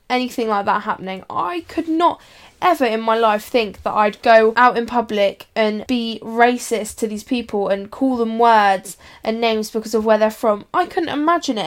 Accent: British